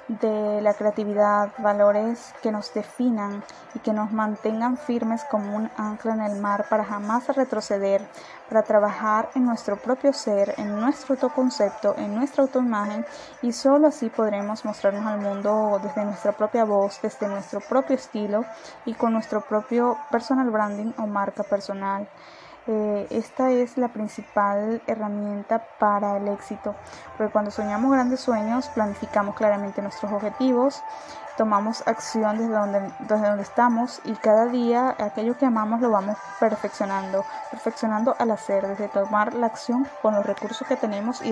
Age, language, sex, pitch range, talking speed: 10-29, Spanish, female, 205-240 Hz, 150 wpm